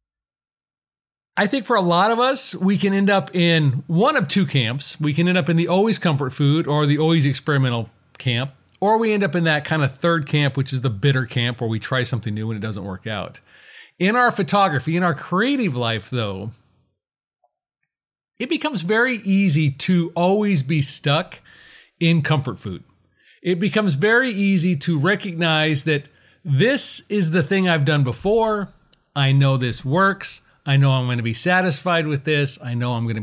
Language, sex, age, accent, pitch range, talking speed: English, male, 40-59, American, 130-180 Hz, 190 wpm